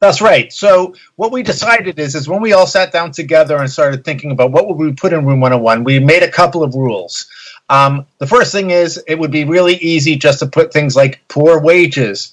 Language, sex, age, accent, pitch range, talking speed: English, male, 50-69, American, 130-170 Hz, 235 wpm